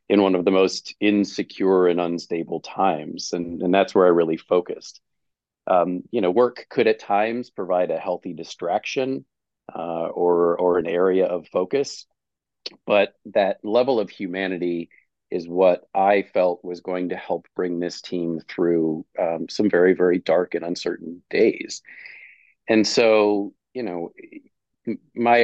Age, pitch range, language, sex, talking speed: 40-59, 90-110 Hz, English, male, 150 wpm